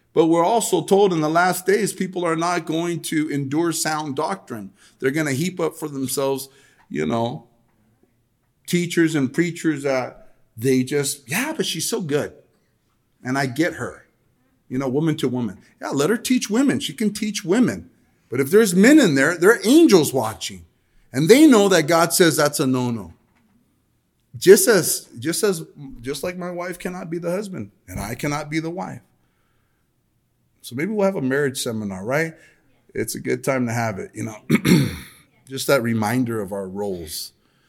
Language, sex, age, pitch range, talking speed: English, male, 40-59, 110-165 Hz, 175 wpm